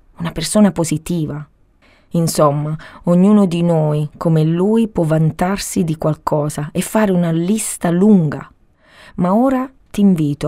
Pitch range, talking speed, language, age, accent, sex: 150-185 Hz, 125 wpm, Italian, 30-49, native, female